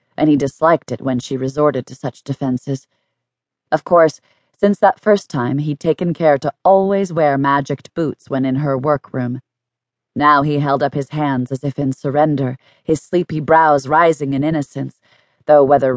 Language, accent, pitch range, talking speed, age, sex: English, American, 130-160 Hz, 175 wpm, 30-49, female